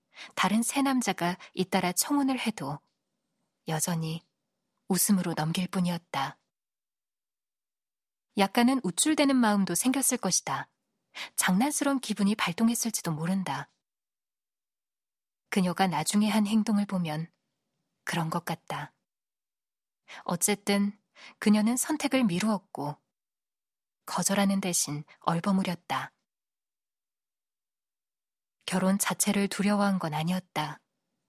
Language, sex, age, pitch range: Korean, female, 20-39, 180-225 Hz